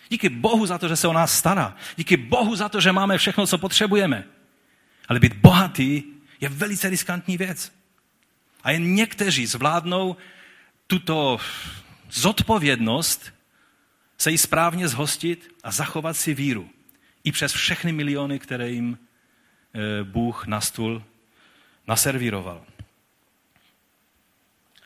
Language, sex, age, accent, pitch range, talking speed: Czech, male, 40-59, native, 115-185 Hz, 120 wpm